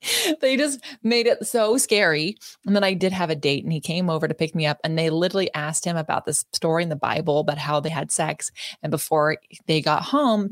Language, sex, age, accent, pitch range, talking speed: English, female, 20-39, American, 155-220 Hz, 240 wpm